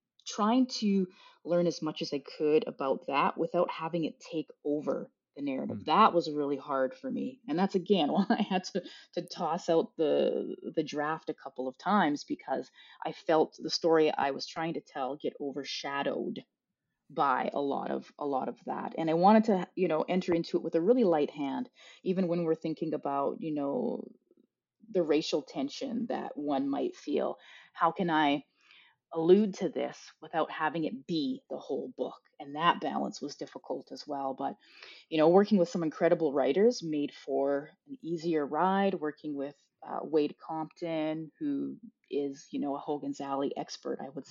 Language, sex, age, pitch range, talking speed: English, female, 30-49, 150-225 Hz, 185 wpm